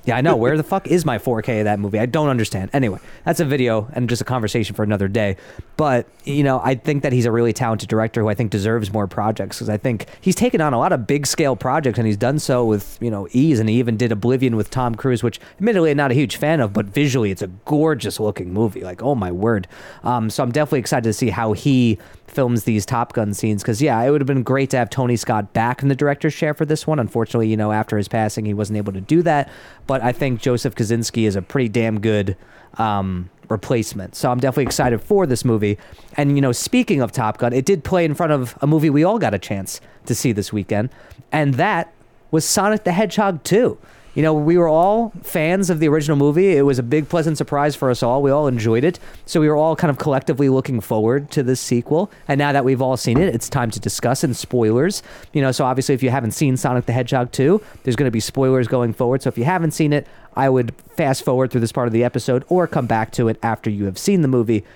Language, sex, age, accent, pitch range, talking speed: English, male, 30-49, American, 110-150 Hz, 255 wpm